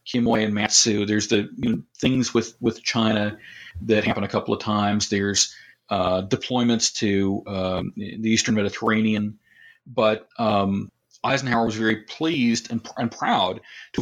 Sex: male